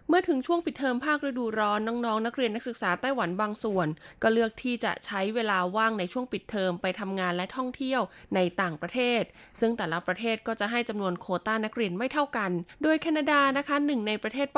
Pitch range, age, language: 190-250 Hz, 20-39, Thai